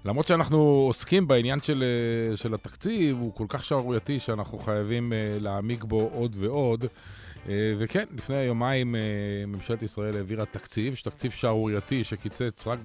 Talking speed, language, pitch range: 130 wpm, Hebrew, 110-160 Hz